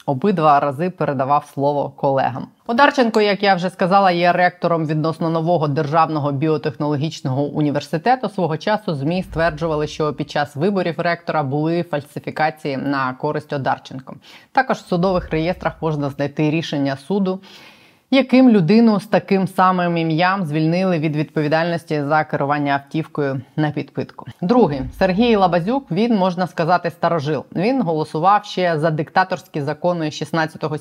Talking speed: 130 wpm